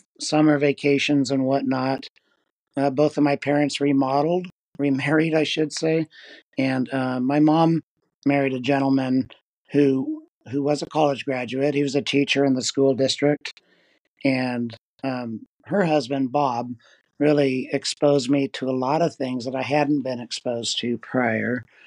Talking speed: 150 wpm